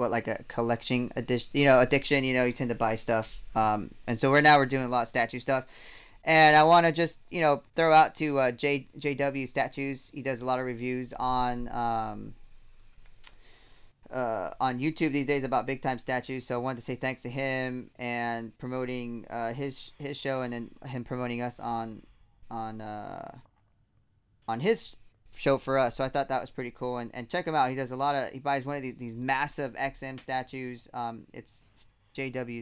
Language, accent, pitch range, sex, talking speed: English, American, 110-135 Hz, male, 210 wpm